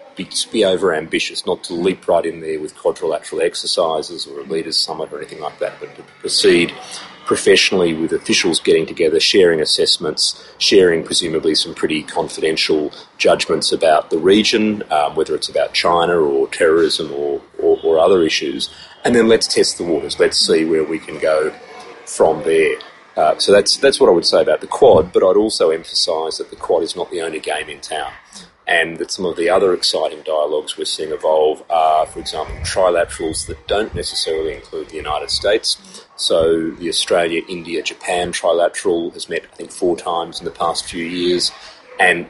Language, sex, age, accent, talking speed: English, male, 30-49, Australian, 185 wpm